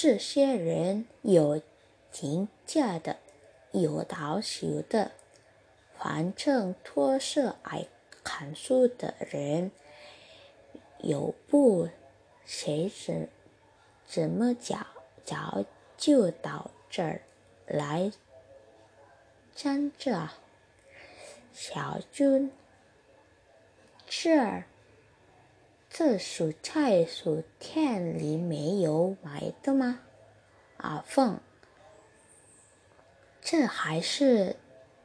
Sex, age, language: female, 20-39, Malay